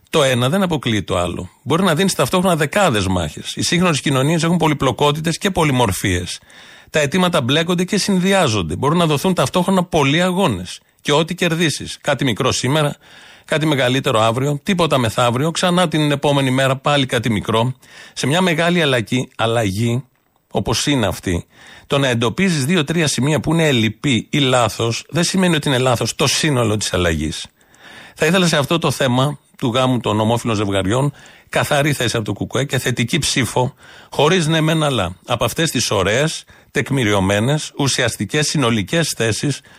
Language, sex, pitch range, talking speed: Greek, male, 115-160 Hz, 160 wpm